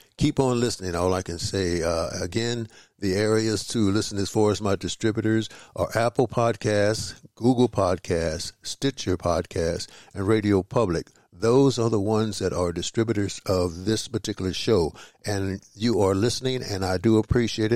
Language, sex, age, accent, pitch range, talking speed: English, male, 60-79, American, 95-115 Hz, 160 wpm